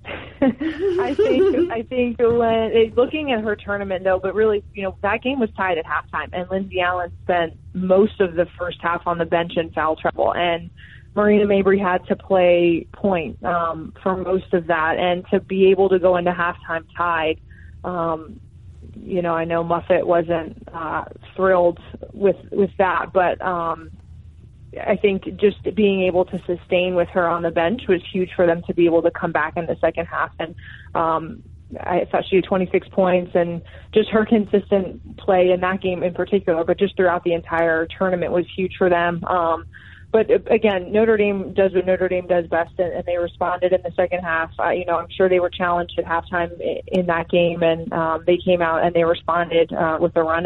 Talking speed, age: 195 wpm, 20-39